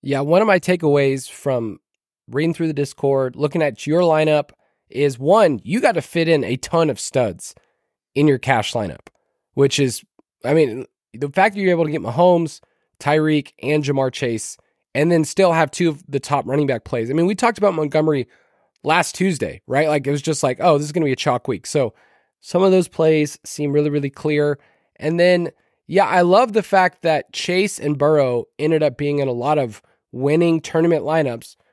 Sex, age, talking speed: male, 20-39, 205 wpm